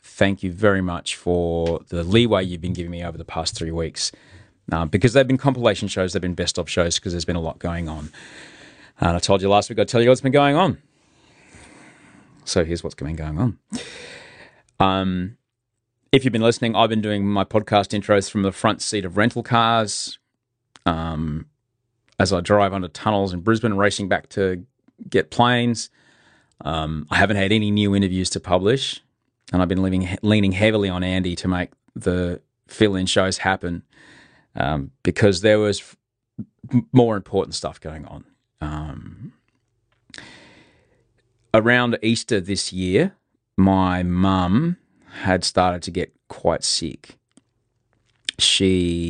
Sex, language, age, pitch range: male, English, 30-49, 90-115 Hz